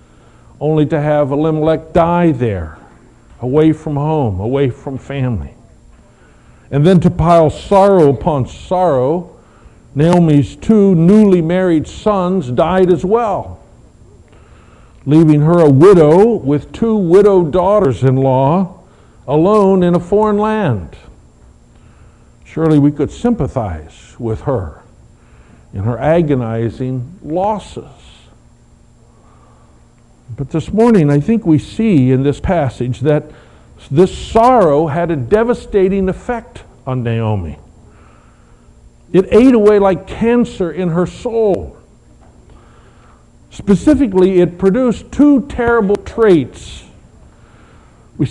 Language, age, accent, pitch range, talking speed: English, 60-79, American, 130-185 Hz, 105 wpm